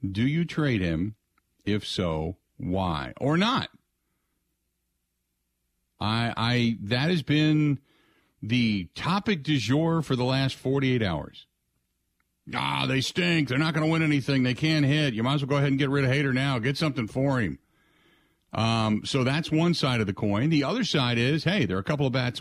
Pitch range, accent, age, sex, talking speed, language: 110-155 Hz, American, 50-69, male, 185 wpm, English